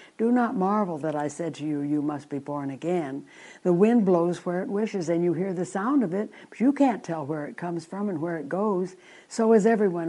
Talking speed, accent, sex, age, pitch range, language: 245 wpm, American, female, 60-79, 165-225 Hz, English